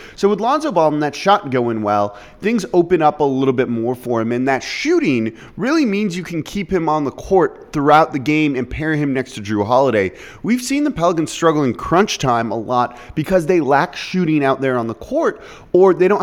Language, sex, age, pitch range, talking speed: English, male, 30-49, 120-165 Hz, 230 wpm